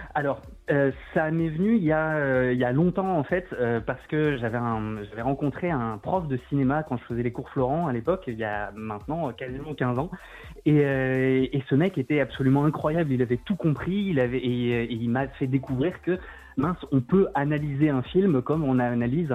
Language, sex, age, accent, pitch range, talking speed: French, male, 20-39, French, 120-150 Hz, 220 wpm